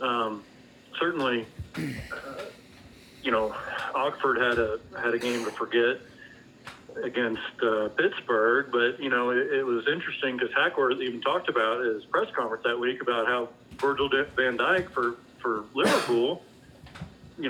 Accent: American